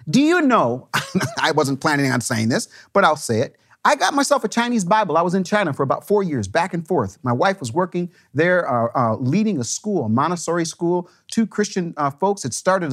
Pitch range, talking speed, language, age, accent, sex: 125-205 Hz, 225 wpm, English, 40-59, American, male